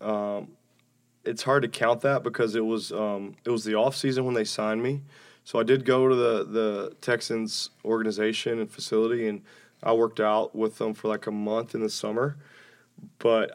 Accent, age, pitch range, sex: American, 20-39, 105-115 Hz, male